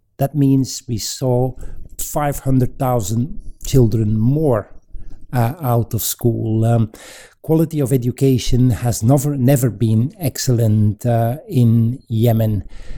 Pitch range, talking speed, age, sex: 110-135 Hz, 105 wpm, 60-79, male